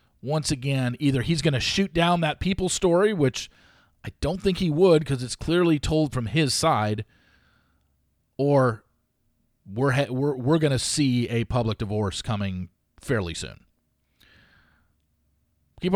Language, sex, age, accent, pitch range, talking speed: English, male, 40-59, American, 110-155 Hz, 145 wpm